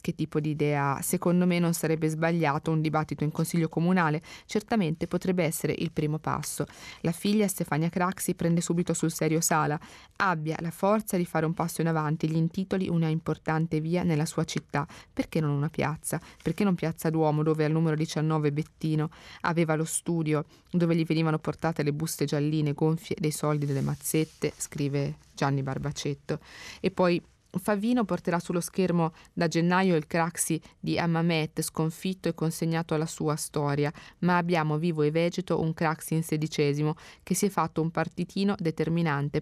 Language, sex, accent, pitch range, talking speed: Italian, female, native, 155-175 Hz, 165 wpm